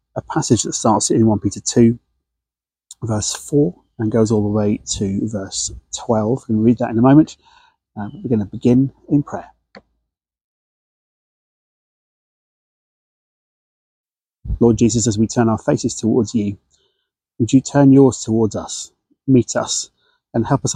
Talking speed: 145 wpm